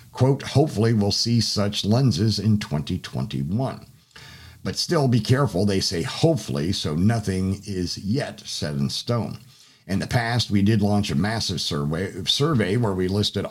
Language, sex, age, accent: English, male, 50-69, American